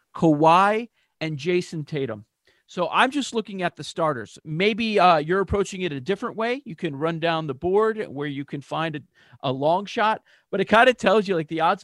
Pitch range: 150-195 Hz